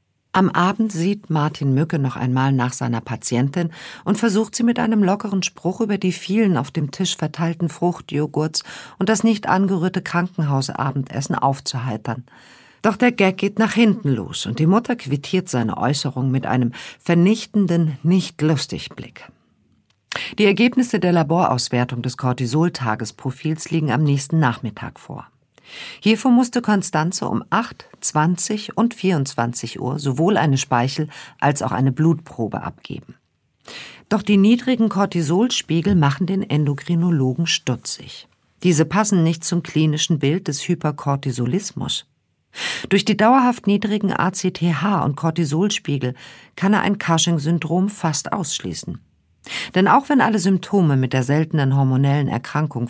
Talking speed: 135 wpm